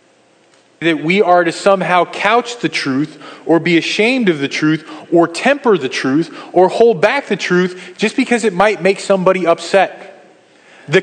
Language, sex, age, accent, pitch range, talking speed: English, male, 30-49, American, 170-220 Hz, 170 wpm